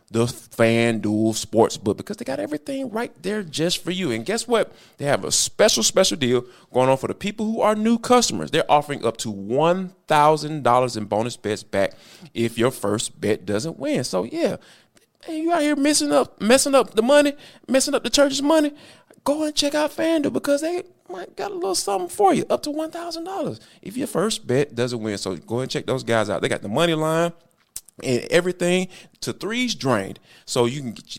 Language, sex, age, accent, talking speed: English, male, 30-49, American, 200 wpm